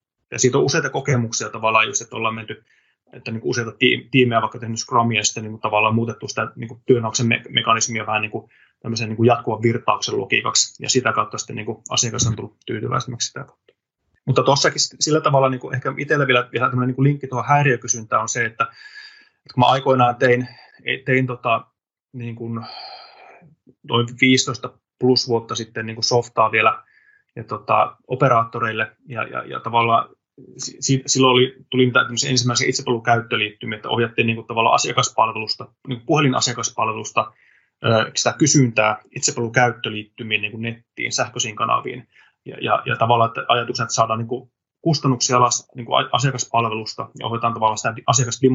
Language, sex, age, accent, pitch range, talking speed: Finnish, male, 20-39, native, 115-130 Hz, 150 wpm